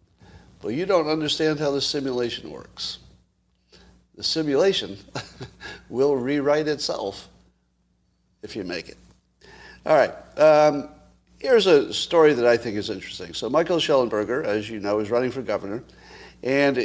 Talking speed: 140 wpm